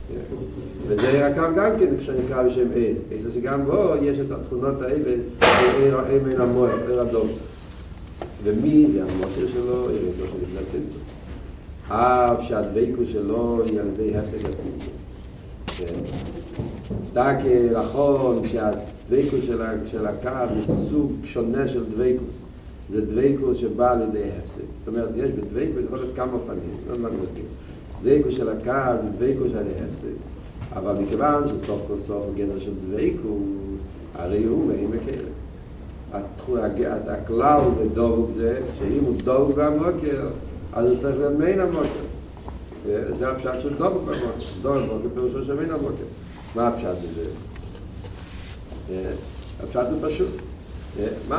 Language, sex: Hebrew, male